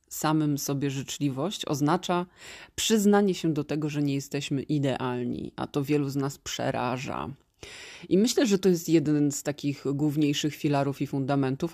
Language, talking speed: Polish, 155 wpm